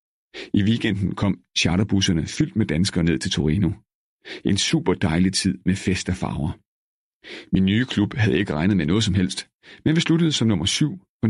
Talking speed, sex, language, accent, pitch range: 185 wpm, male, Danish, native, 95-110 Hz